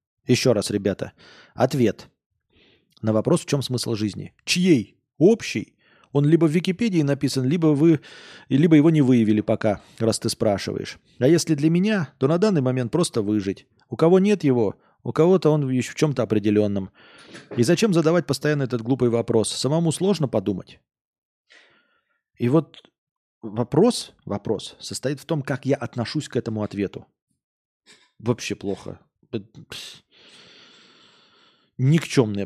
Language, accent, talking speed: Russian, native, 135 wpm